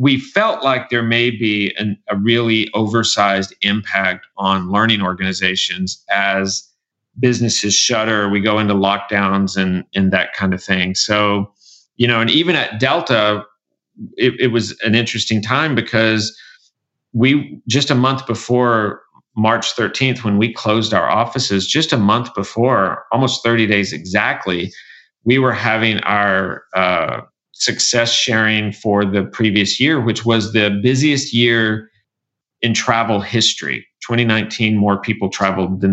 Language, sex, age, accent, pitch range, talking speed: English, male, 40-59, American, 100-120 Hz, 140 wpm